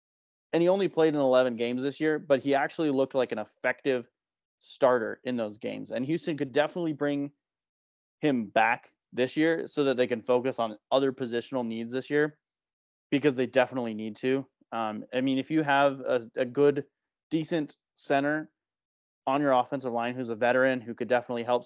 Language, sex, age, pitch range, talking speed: English, male, 20-39, 120-145 Hz, 185 wpm